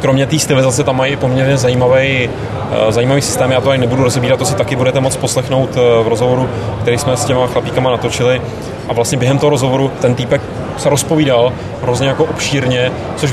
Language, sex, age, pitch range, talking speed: Czech, male, 20-39, 120-135 Hz, 185 wpm